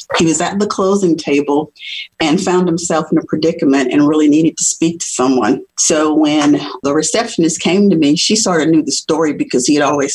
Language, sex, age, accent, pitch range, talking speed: English, female, 50-69, American, 155-185 Hz, 215 wpm